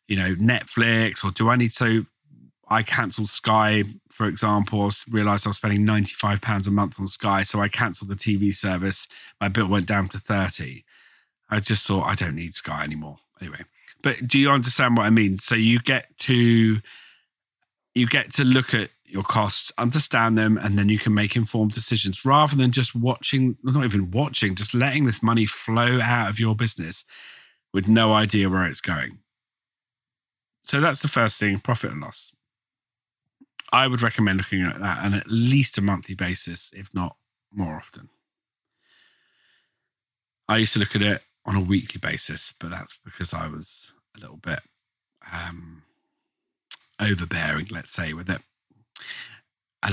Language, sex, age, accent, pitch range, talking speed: English, male, 40-59, British, 100-120 Hz, 165 wpm